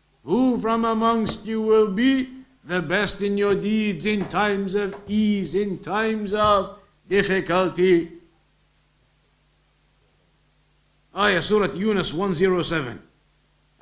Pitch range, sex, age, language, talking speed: 185-220 Hz, male, 60-79, English, 100 wpm